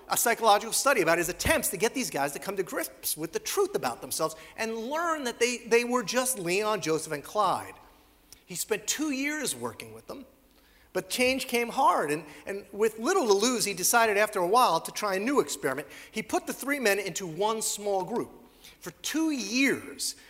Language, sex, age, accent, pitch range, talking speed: English, male, 40-59, American, 185-255 Hz, 205 wpm